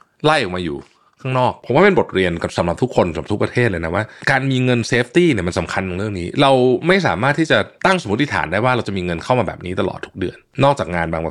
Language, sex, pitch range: Thai, male, 95-140 Hz